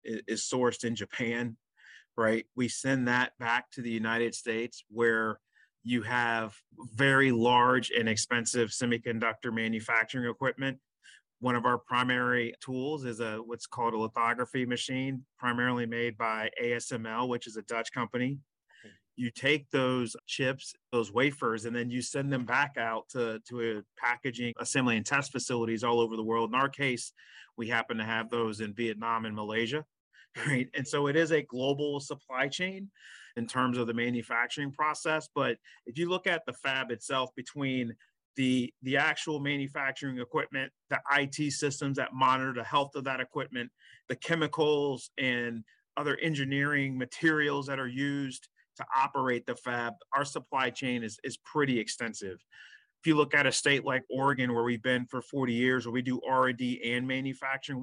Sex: male